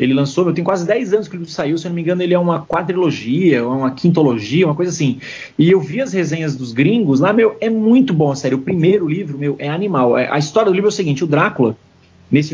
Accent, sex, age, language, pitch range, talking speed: Brazilian, male, 30-49, Portuguese, 135-180 Hz, 255 wpm